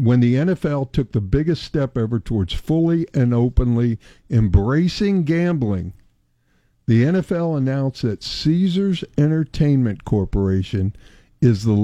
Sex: male